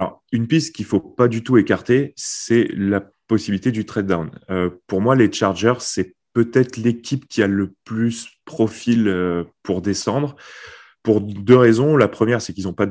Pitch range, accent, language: 95-120 Hz, French, French